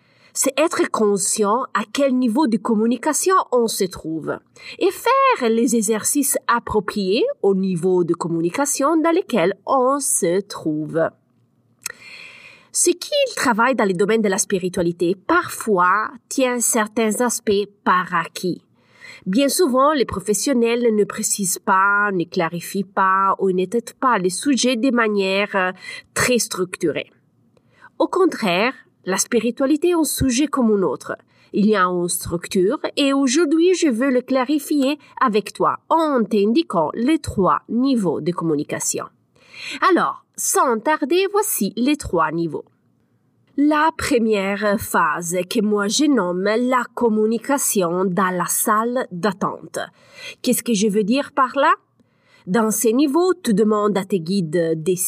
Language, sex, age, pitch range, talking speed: French, female, 30-49, 195-275 Hz, 135 wpm